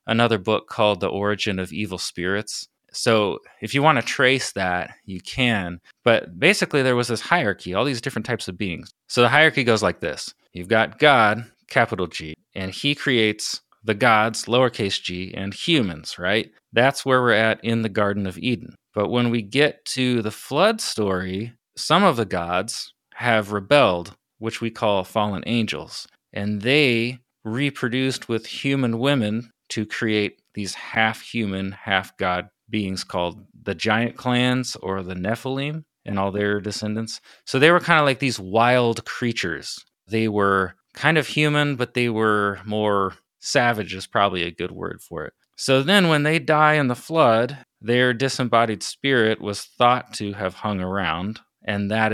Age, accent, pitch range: 30-49, American, 100-125 Hz